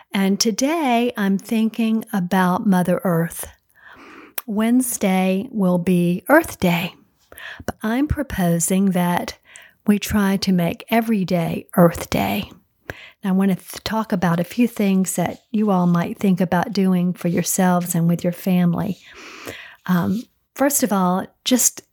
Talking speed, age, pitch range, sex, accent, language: 140 wpm, 50-69, 185-225 Hz, female, American, English